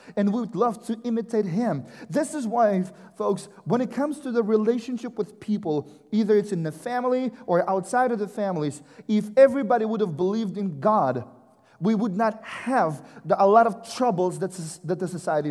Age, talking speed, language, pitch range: 30-49, 195 wpm, English, 185-235 Hz